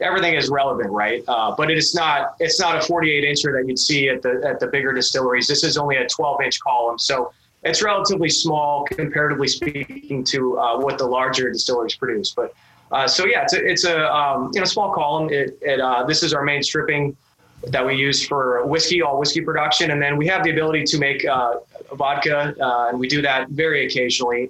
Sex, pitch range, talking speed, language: male, 135-165 Hz, 220 wpm, English